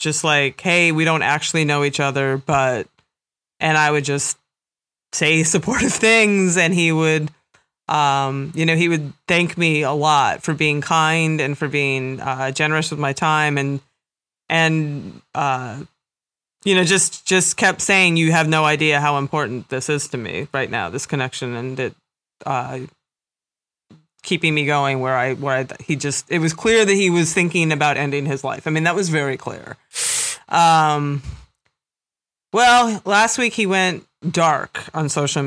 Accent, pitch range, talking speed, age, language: American, 145-175 Hz, 170 wpm, 30-49, English